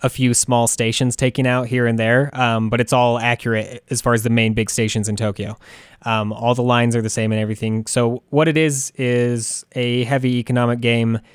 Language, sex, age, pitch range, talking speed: English, male, 20-39, 110-125 Hz, 215 wpm